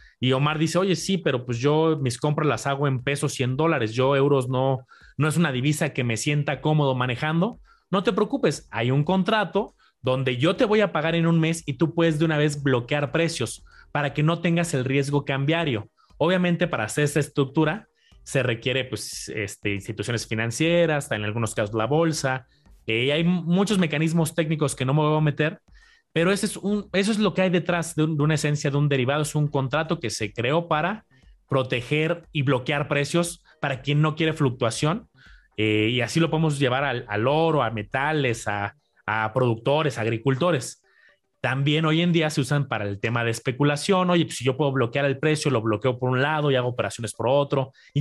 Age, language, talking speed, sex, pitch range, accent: 30-49, Spanish, 210 wpm, male, 130-170 Hz, Mexican